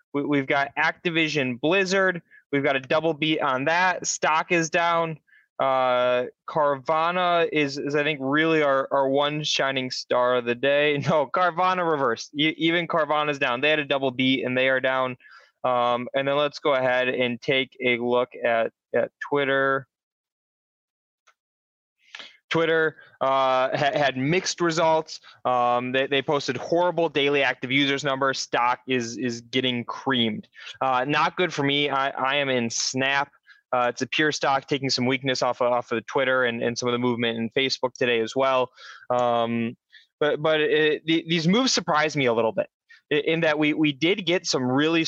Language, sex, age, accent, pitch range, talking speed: English, male, 20-39, American, 125-155 Hz, 180 wpm